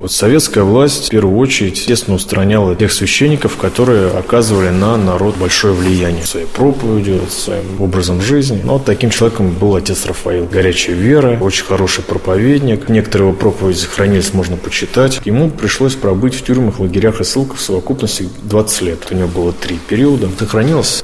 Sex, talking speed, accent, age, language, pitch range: male, 160 wpm, native, 20-39, Russian, 95-115 Hz